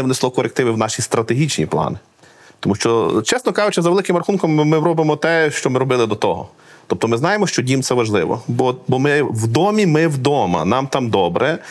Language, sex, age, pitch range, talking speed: Ukrainian, male, 40-59, 100-130 Hz, 200 wpm